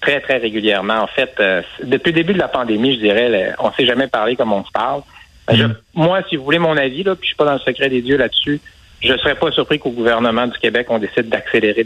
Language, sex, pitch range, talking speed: French, male, 115-145 Hz, 275 wpm